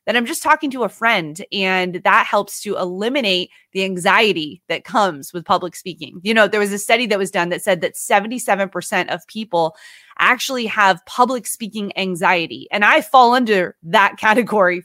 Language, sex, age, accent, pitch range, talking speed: English, female, 20-39, American, 190-240 Hz, 180 wpm